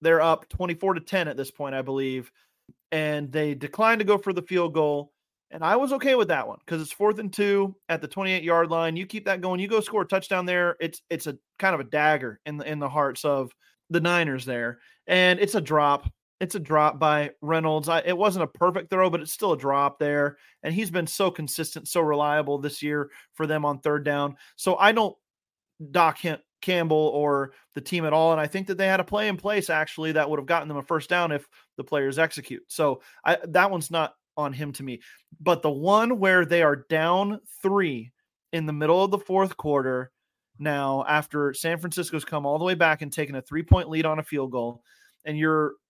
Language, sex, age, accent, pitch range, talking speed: English, male, 30-49, American, 145-185 Hz, 225 wpm